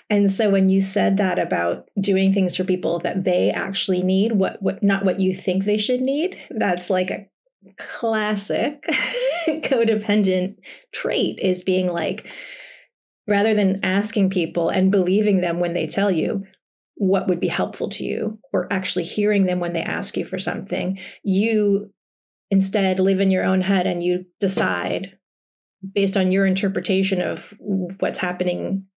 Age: 30-49